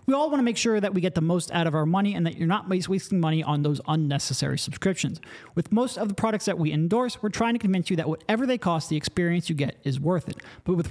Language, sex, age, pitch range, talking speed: English, male, 40-59, 155-210 Hz, 280 wpm